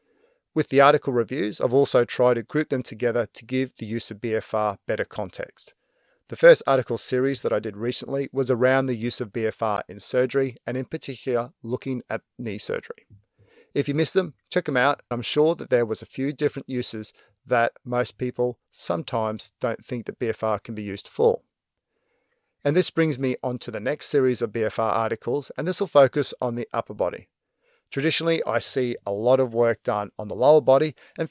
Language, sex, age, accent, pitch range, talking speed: English, male, 40-59, Australian, 115-145 Hz, 195 wpm